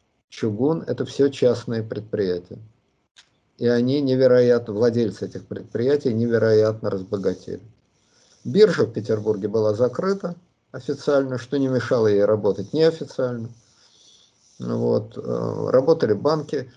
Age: 50-69